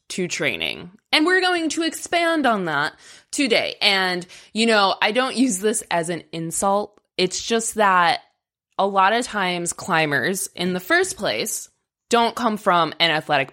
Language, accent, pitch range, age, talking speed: English, American, 160-225 Hz, 20-39, 165 wpm